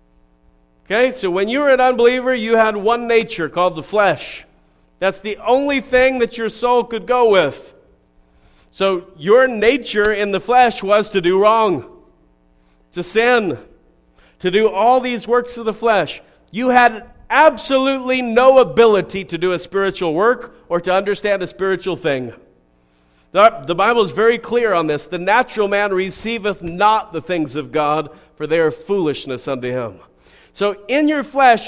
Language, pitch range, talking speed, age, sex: English, 150-220 Hz, 165 wpm, 40-59, male